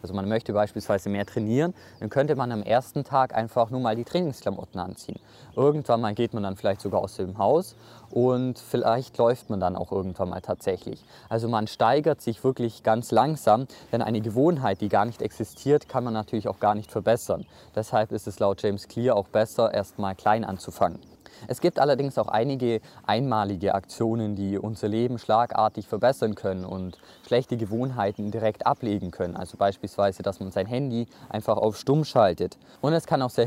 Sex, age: male, 20-39